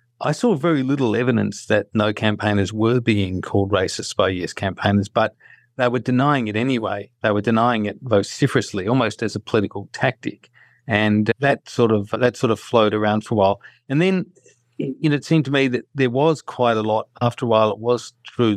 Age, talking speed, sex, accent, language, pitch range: 40-59, 215 wpm, male, Australian, English, 105-125 Hz